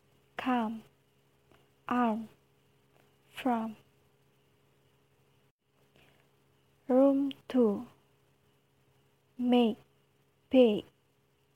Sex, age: female, 20-39